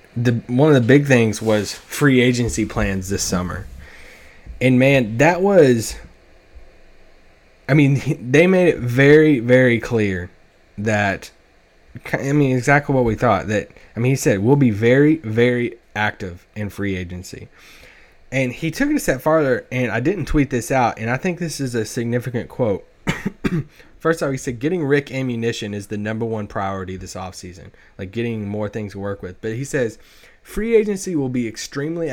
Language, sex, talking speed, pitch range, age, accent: English, male, 170 wpm, 105-135 Hz, 20-39, American